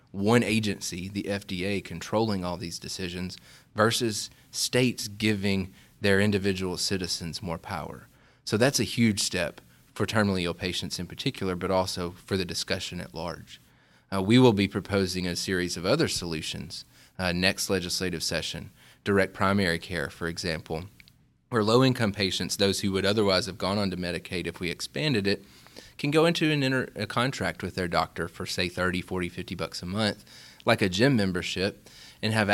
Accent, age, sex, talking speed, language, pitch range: American, 30-49, male, 170 wpm, English, 90-105 Hz